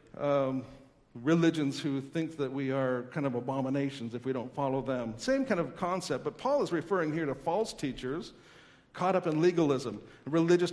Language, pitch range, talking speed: English, 145-195 Hz, 180 wpm